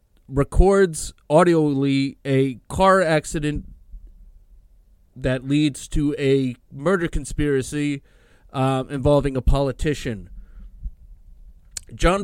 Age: 30-49